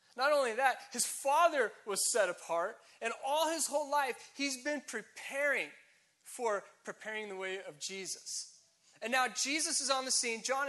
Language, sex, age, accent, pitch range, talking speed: English, male, 20-39, American, 215-290 Hz, 170 wpm